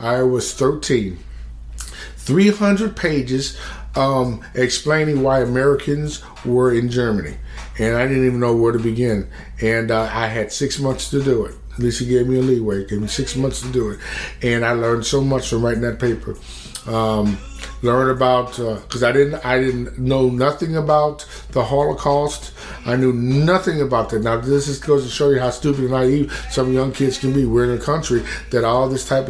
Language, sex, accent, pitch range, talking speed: English, male, American, 115-135 Hz, 195 wpm